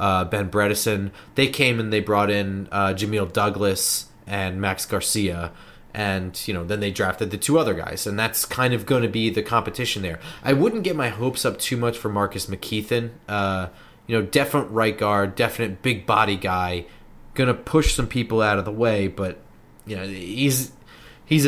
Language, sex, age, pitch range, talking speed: English, male, 20-39, 100-125 Hz, 195 wpm